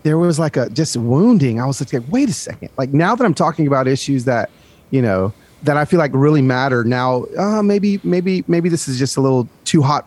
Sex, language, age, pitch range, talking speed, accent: male, English, 30-49, 125-170 Hz, 240 wpm, American